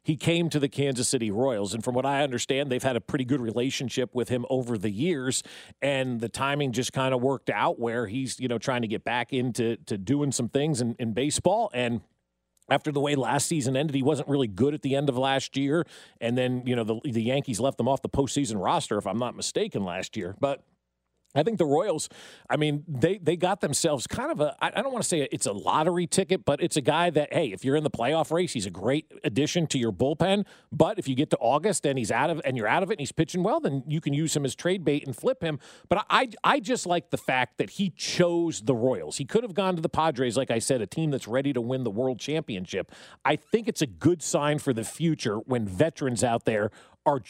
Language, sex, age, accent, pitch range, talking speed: English, male, 40-59, American, 120-155 Hz, 255 wpm